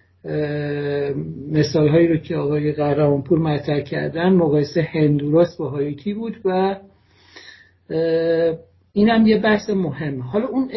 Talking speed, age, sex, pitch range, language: 100 wpm, 50-69, male, 150-195 Hz, Persian